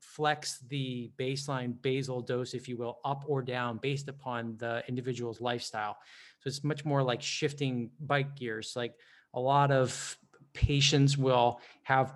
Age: 30-49